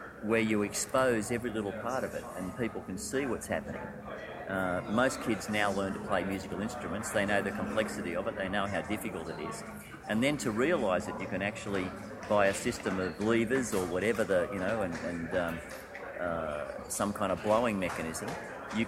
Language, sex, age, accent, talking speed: English, male, 40-59, Australian, 195 wpm